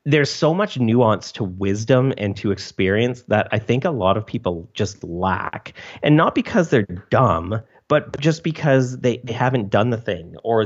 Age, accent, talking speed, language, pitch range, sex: 30-49, American, 185 wpm, English, 95-130 Hz, male